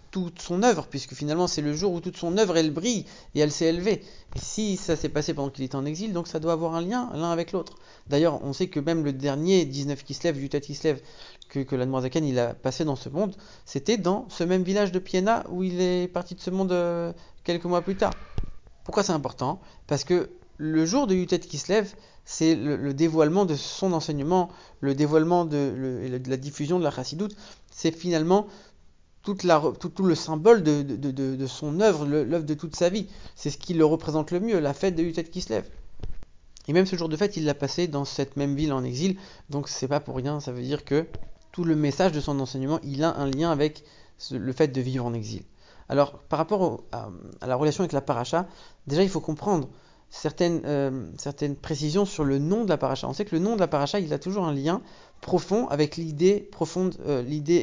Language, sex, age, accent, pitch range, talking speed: English, male, 40-59, French, 145-180 Hz, 235 wpm